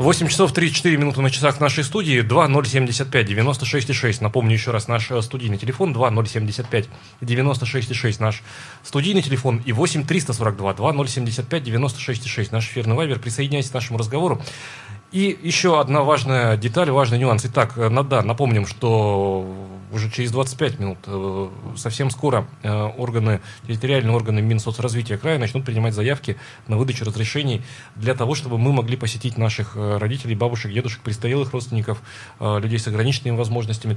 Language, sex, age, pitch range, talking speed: Russian, male, 30-49, 110-130 Hz, 165 wpm